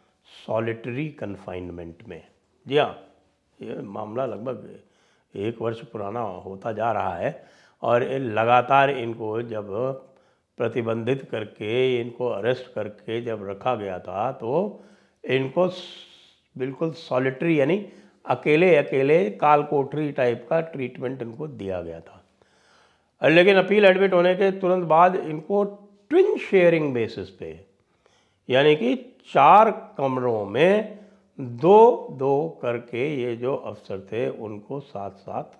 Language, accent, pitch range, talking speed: English, Indian, 115-180 Hz, 110 wpm